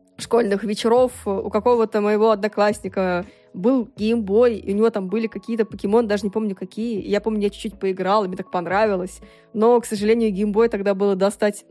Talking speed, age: 175 wpm, 20-39